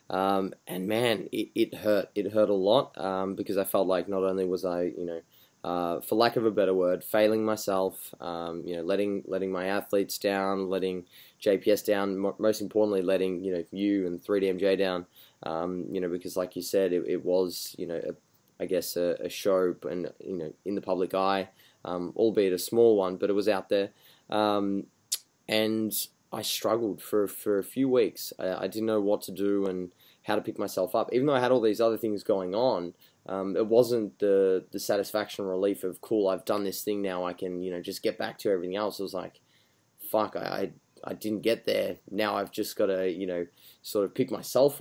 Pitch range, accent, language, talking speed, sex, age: 90-105 Hz, Australian, English, 220 wpm, male, 20-39